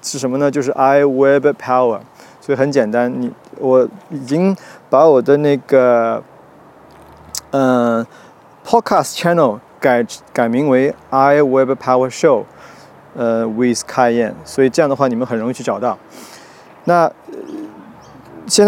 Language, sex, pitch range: Chinese, male, 125-155 Hz